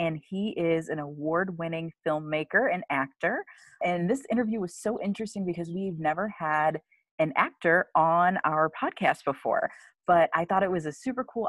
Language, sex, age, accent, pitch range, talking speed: English, female, 30-49, American, 145-190 Hz, 165 wpm